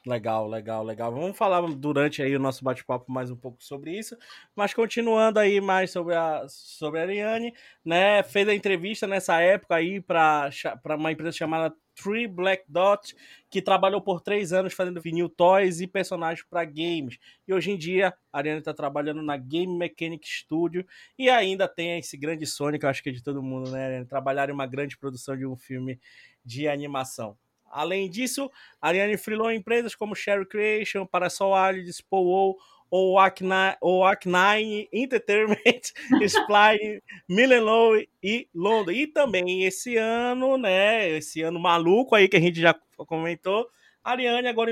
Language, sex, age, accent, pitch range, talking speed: Portuguese, male, 20-39, Brazilian, 150-205 Hz, 160 wpm